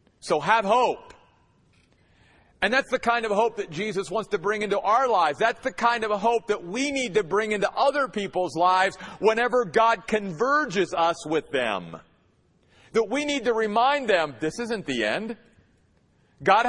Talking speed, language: 175 wpm, English